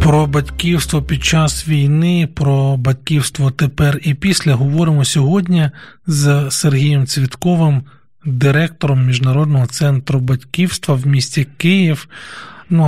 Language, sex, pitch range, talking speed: Ukrainian, male, 140-170 Hz, 105 wpm